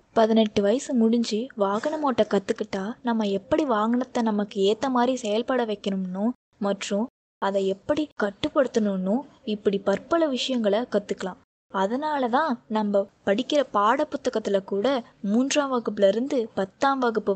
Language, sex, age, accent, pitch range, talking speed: Tamil, female, 20-39, native, 210-265 Hz, 120 wpm